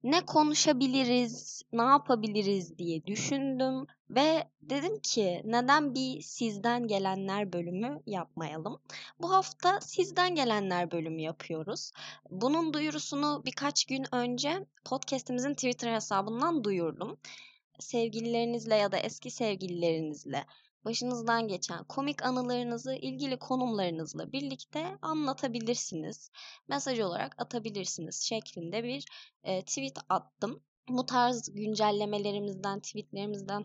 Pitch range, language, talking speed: 195-265 Hz, Turkish, 95 wpm